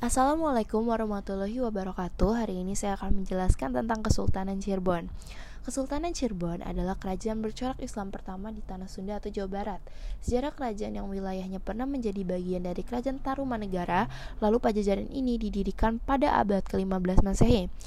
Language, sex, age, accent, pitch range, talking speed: Indonesian, female, 20-39, native, 185-230 Hz, 140 wpm